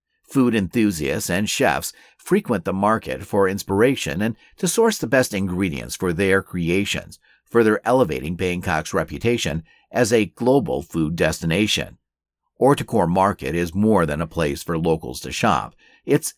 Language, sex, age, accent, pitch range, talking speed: English, male, 50-69, American, 85-115 Hz, 145 wpm